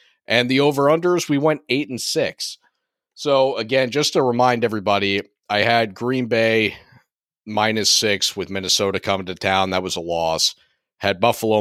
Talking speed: 155 wpm